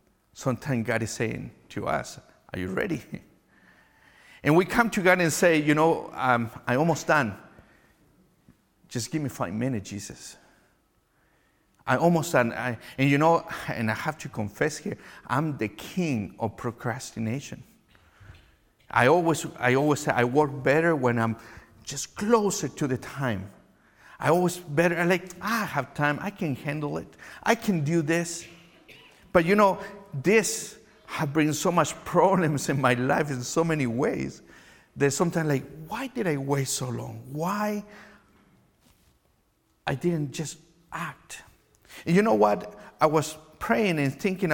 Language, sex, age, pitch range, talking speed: English, male, 50-69, 125-170 Hz, 155 wpm